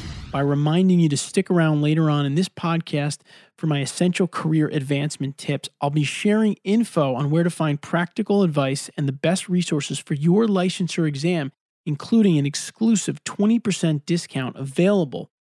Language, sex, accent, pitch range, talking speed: English, male, American, 145-180 Hz, 160 wpm